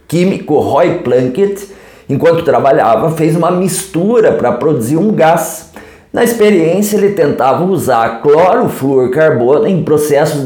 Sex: male